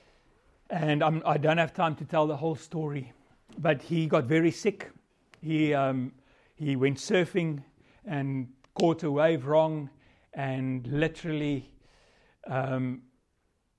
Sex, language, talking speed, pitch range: male, English, 125 wpm, 135-165 Hz